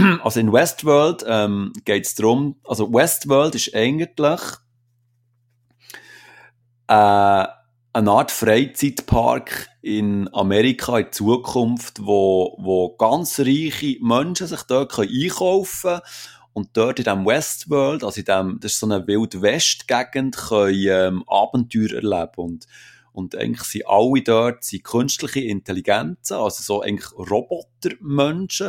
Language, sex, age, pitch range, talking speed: German, male, 30-49, 105-135 Hz, 115 wpm